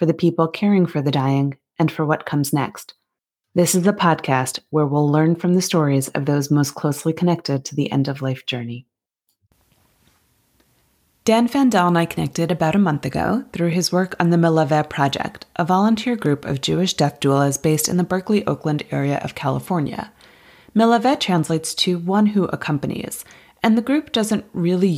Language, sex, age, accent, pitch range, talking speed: English, female, 30-49, American, 150-200 Hz, 175 wpm